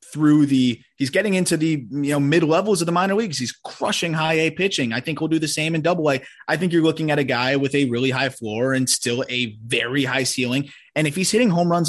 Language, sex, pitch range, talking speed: English, male, 130-170 Hz, 260 wpm